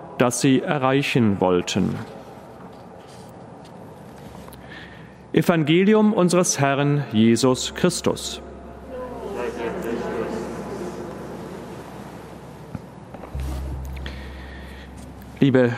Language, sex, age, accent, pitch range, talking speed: German, male, 40-59, German, 125-165 Hz, 40 wpm